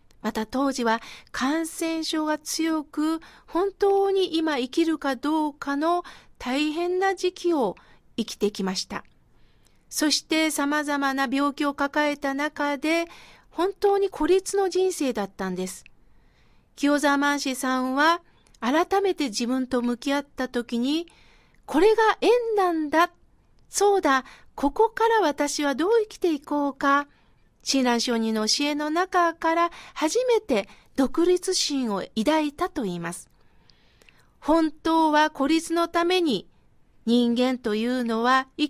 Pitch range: 275-355 Hz